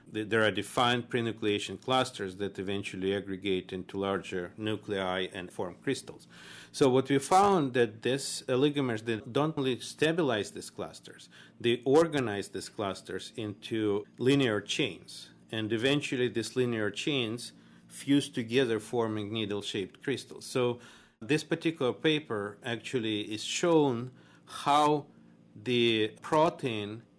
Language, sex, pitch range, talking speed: English, male, 100-130 Hz, 125 wpm